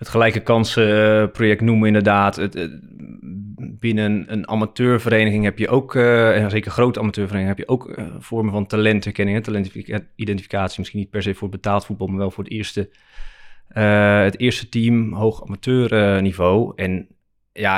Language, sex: Dutch, male